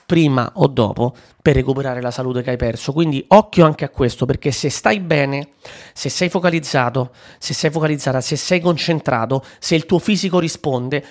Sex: male